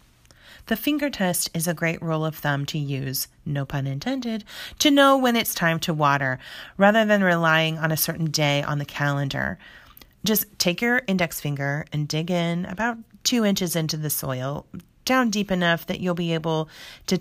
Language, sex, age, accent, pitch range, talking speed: English, female, 30-49, American, 150-190 Hz, 185 wpm